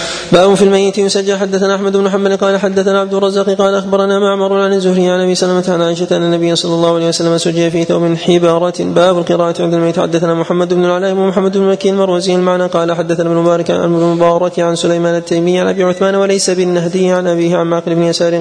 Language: Arabic